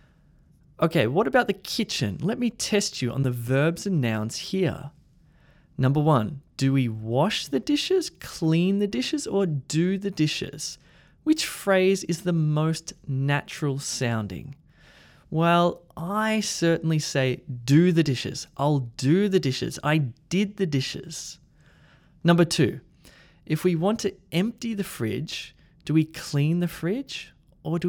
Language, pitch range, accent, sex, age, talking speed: English, 140-185 Hz, Australian, male, 20-39, 145 wpm